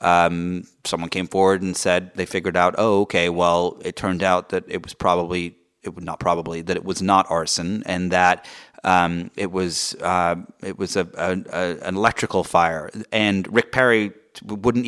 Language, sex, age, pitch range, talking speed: English, male, 30-49, 90-110 Hz, 180 wpm